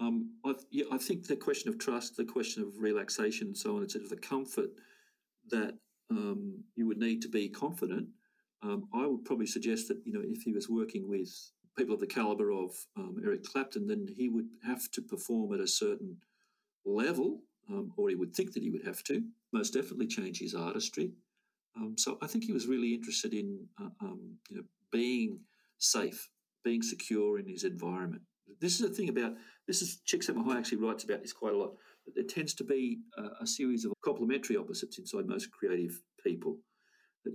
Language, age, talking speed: English, 50-69, 200 wpm